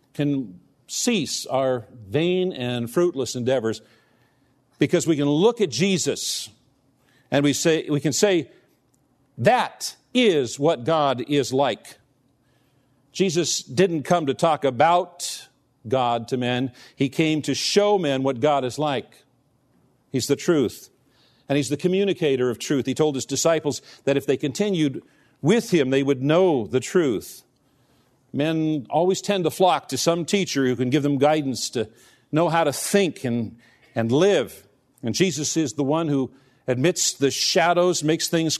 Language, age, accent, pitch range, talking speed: English, 50-69, American, 130-165 Hz, 155 wpm